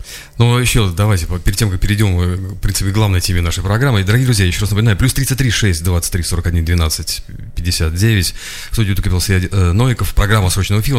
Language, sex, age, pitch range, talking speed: Russian, male, 30-49, 85-105 Hz, 175 wpm